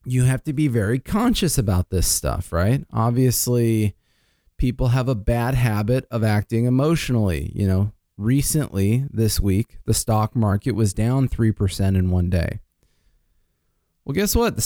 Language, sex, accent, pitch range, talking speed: English, male, American, 110-145 Hz, 150 wpm